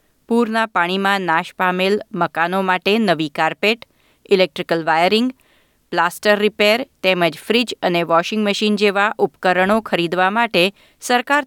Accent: native